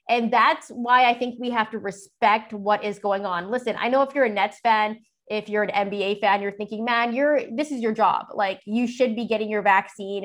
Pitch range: 210-245 Hz